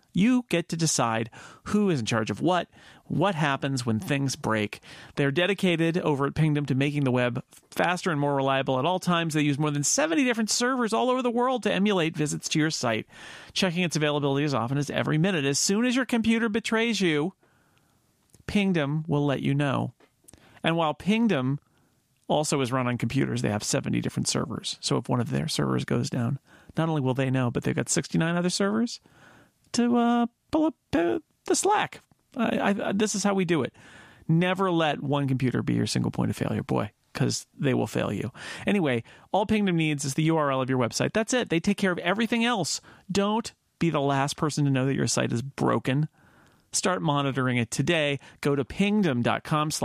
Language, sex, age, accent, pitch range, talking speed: English, male, 40-59, American, 135-200 Hz, 200 wpm